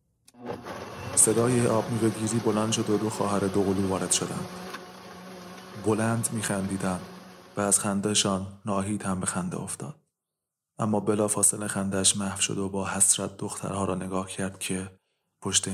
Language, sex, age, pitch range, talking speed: Persian, male, 20-39, 95-110 Hz, 140 wpm